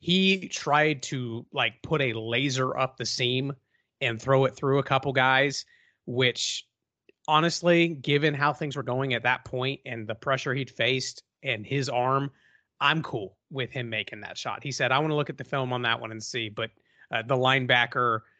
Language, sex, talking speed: English, male, 195 wpm